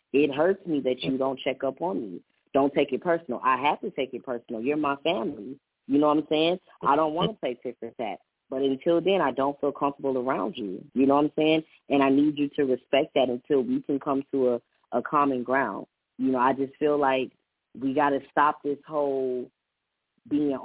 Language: English